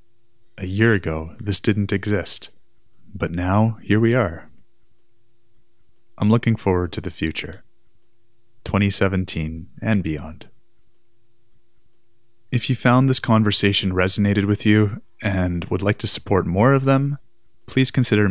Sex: male